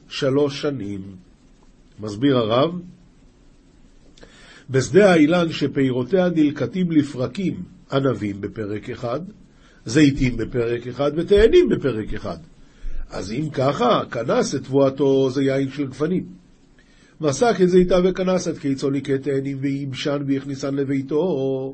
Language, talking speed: Hebrew, 105 wpm